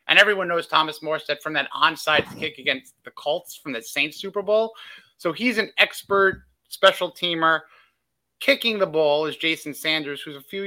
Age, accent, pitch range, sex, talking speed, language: 30-49, American, 150-190 Hz, male, 180 wpm, English